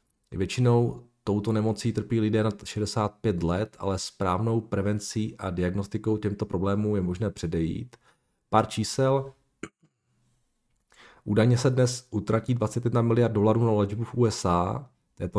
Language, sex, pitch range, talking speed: Czech, male, 95-110 Hz, 125 wpm